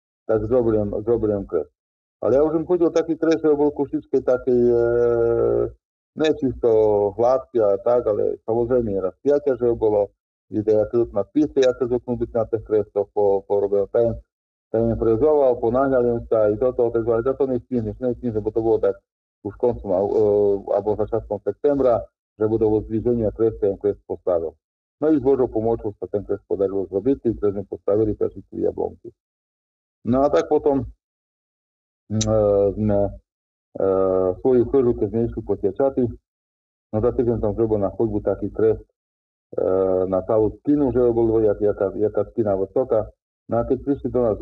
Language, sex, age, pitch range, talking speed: Slovak, male, 40-59, 105-130 Hz, 165 wpm